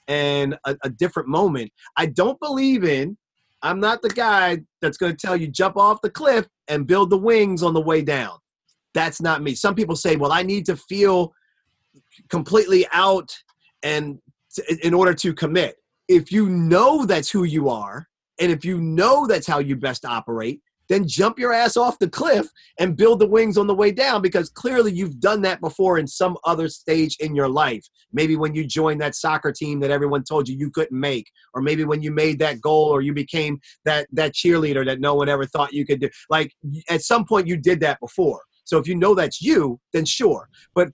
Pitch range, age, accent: 145-195 Hz, 30-49, American